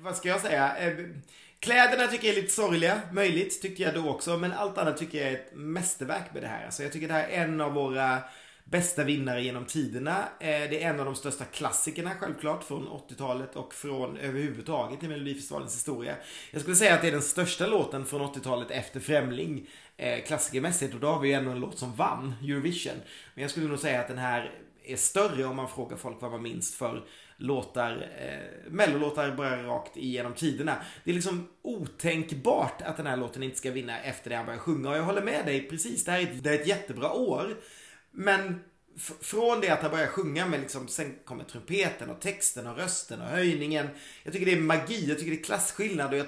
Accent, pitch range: native, 135-180 Hz